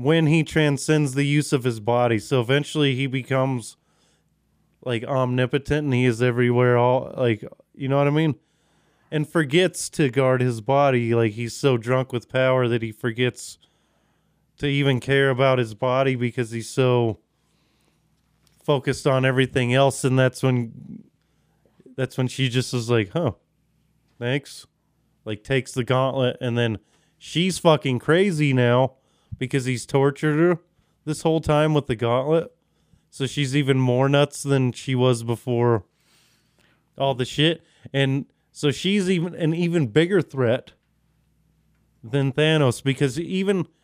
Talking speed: 150 wpm